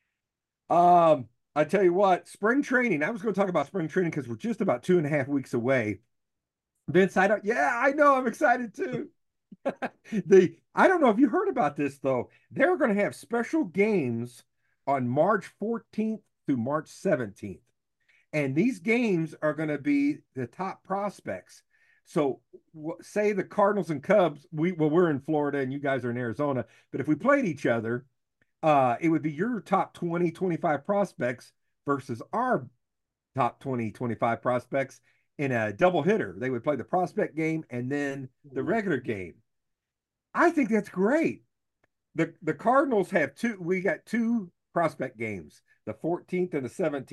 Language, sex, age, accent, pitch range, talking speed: English, male, 50-69, American, 135-200 Hz, 175 wpm